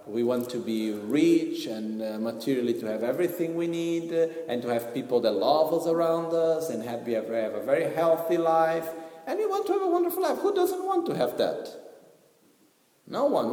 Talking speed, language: 190 wpm, Italian